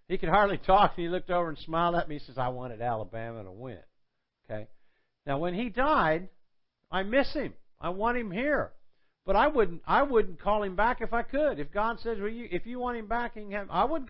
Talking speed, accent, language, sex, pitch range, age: 225 wpm, American, English, male, 140-220 Hz, 50-69